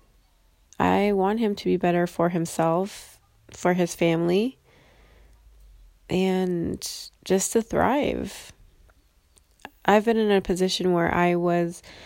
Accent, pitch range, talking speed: American, 125-195 Hz, 115 wpm